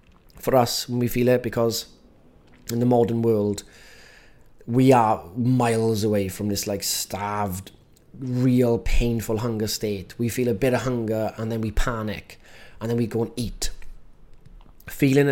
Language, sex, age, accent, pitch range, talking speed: English, male, 20-39, British, 115-140 Hz, 155 wpm